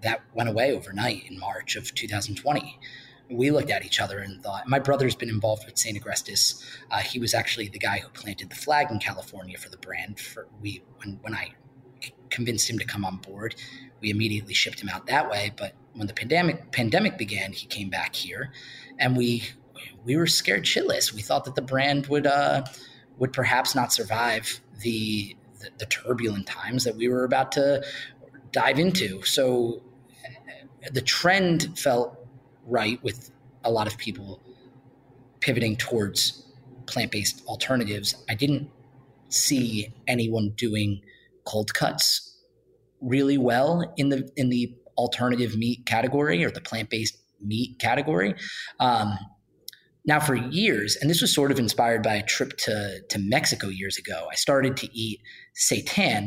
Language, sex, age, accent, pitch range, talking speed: English, male, 20-39, American, 110-135 Hz, 160 wpm